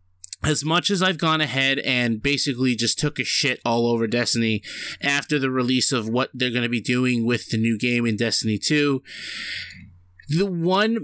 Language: English